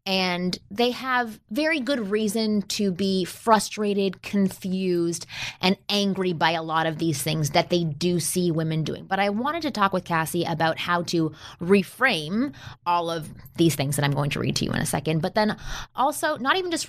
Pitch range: 150-185 Hz